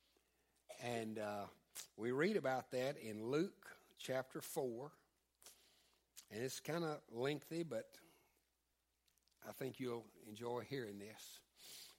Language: English